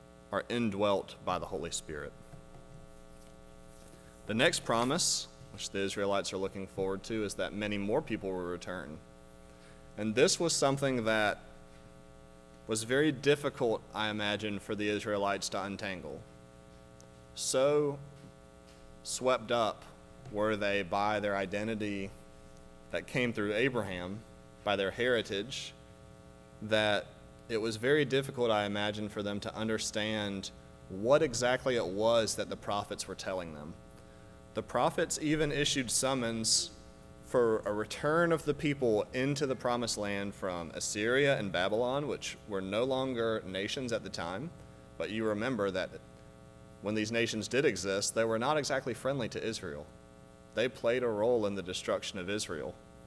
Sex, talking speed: male, 140 wpm